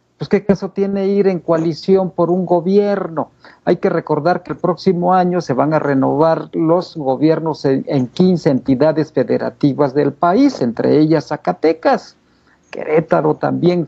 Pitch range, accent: 145-195 Hz, Mexican